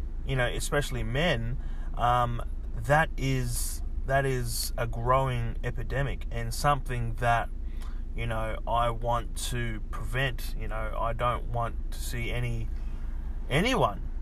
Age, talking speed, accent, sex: 20-39, 125 wpm, Australian, male